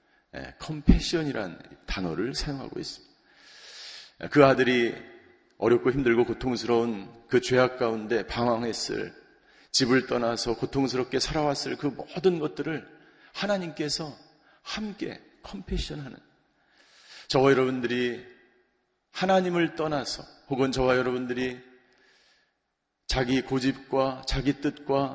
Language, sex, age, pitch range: Korean, male, 40-59, 120-160 Hz